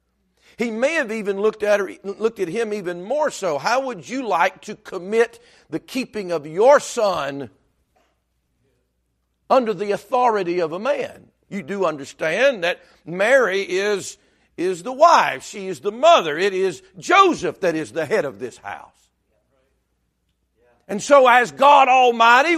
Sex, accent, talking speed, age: male, American, 155 wpm, 50-69